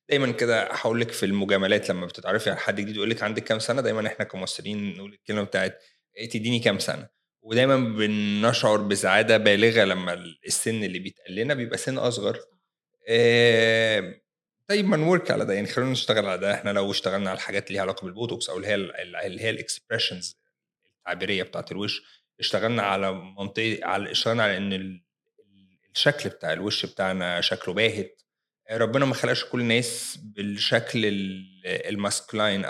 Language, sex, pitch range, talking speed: Arabic, male, 100-140 Hz, 155 wpm